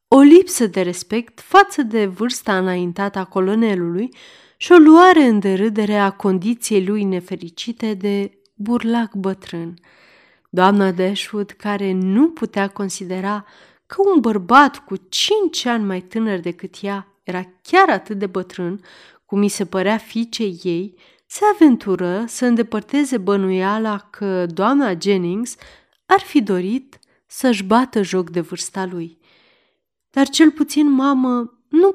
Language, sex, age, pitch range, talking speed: Romanian, female, 30-49, 190-245 Hz, 135 wpm